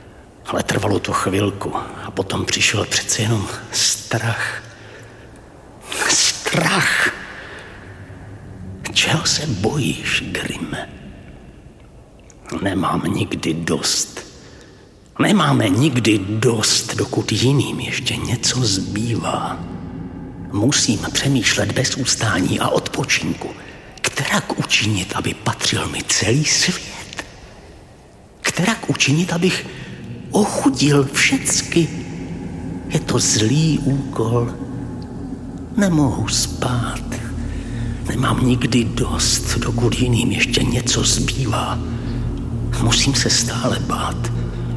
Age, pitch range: 50-69, 105-130 Hz